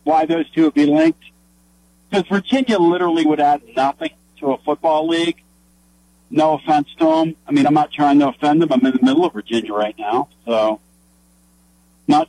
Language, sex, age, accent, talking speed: English, male, 50-69, American, 185 wpm